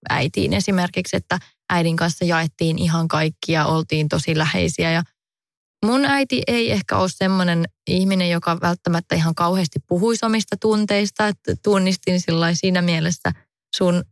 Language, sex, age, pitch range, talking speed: English, female, 20-39, 165-195 Hz, 130 wpm